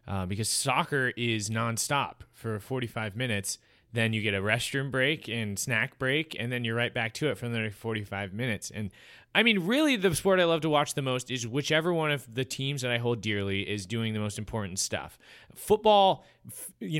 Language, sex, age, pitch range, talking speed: English, male, 20-39, 105-130 Hz, 205 wpm